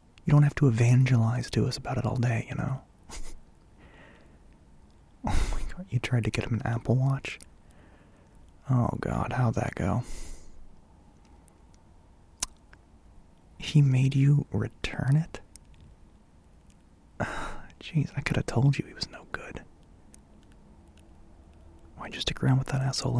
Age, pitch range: 30-49, 80-130 Hz